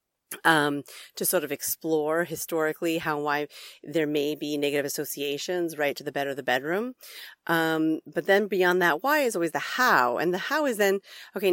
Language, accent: English, American